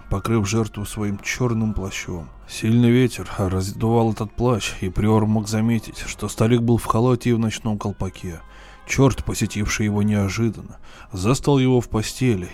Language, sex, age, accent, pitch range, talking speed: Russian, male, 20-39, native, 100-120 Hz, 150 wpm